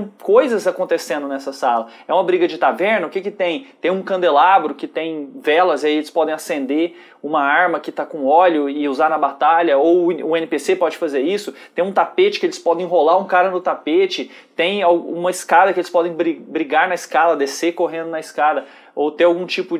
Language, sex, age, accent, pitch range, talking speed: Portuguese, male, 20-39, Brazilian, 160-195 Hz, 205 wpm